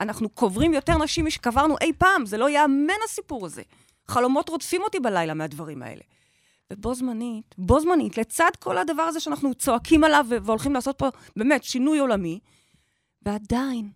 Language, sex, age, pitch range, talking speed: Hebrew, female, 30-49, 215-315 Hz, 155 wpm